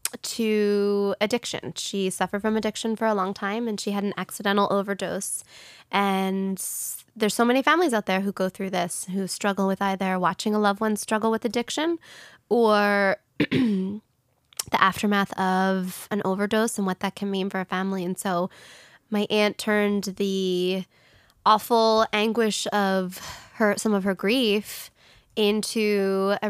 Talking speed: 155 wpm